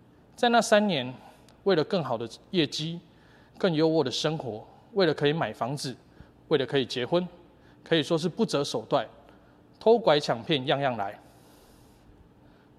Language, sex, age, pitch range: Chinese, male, 20-39, 125-190 Hz